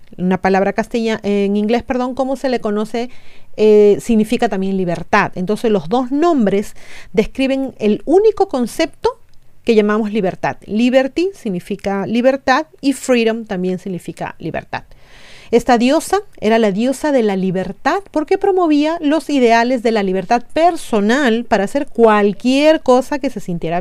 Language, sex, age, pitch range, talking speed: Spanish, female, 40-59, 200-270 Hz, 140 wpm